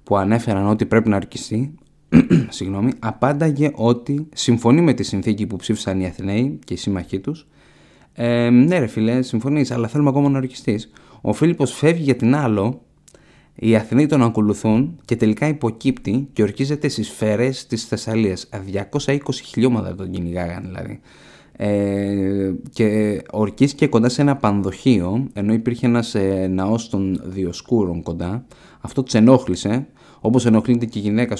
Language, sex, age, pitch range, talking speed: Greek, male, 20-39, 100-130 Hz, 150 wpm